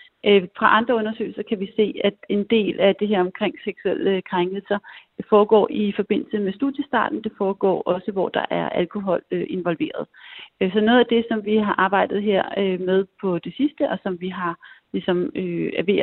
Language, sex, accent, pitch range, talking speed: Danish, female, native, 185-220 Hz, 180 wpm